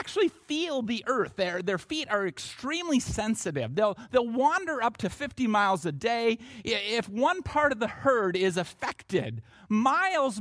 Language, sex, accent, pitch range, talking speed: English, male, American, 180-260 Hz, 160 wpm